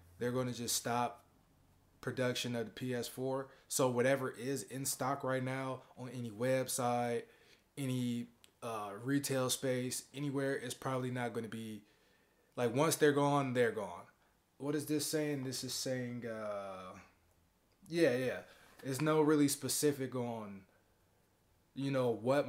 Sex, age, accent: male, 20-39, American